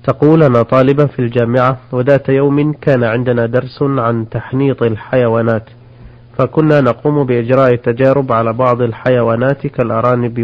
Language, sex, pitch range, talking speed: Arabic, male, 120-140 Hz, 115 wpm